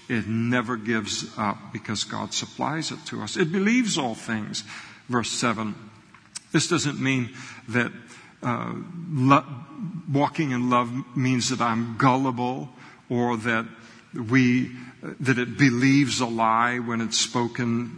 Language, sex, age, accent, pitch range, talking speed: English, male, 50-69, American, 115-140 Hz, 125 wpm